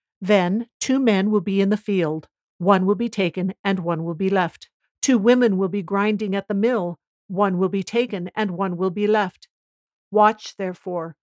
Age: 50-69